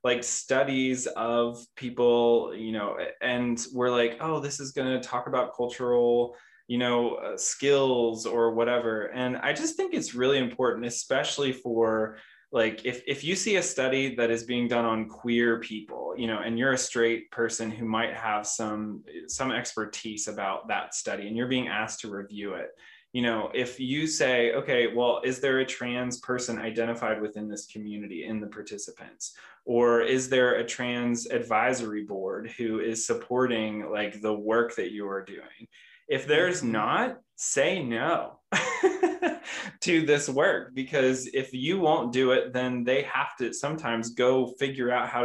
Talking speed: 170 wpm